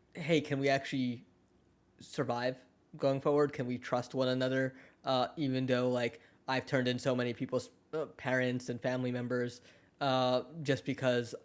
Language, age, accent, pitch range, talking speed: English, 10-29, American, 125-170 Hz, 150 wpm